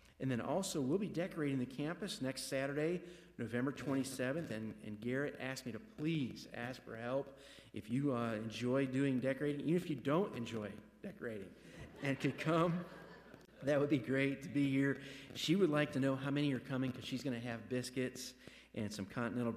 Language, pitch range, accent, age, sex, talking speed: English, 115-140 Hz, American, 50-69, male, 190 wpm